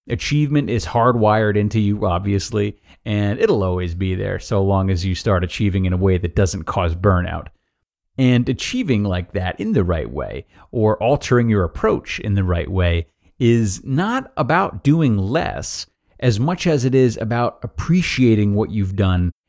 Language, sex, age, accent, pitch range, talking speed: English, male, 30-49, American, 100-145 Hz, 170 wpm